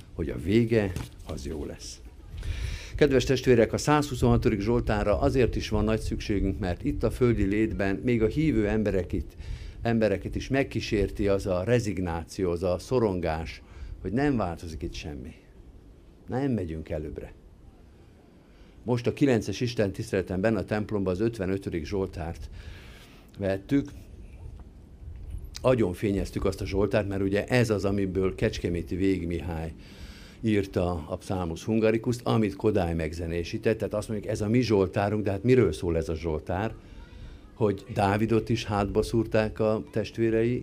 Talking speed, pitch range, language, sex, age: 135 wpm, 90-110 Hz, Hungarian, male, 50-69